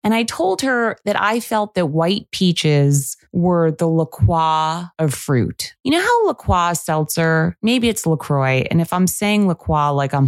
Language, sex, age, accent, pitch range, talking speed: English, female, 20-39, American, 150-210 Hz, 175 wpm